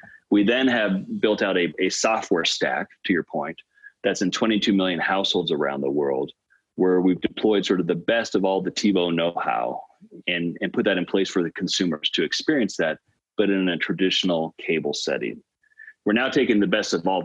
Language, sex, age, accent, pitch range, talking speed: English, male, 30-49, American, 85-105 Hz, 200 wpm